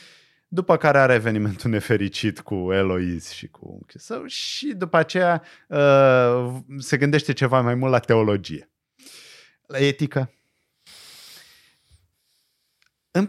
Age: 30-49